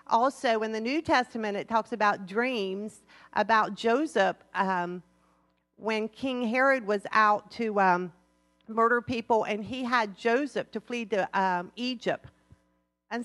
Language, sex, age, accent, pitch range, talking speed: English, female, 50-69, American, 205-265 Hz, 140 wpm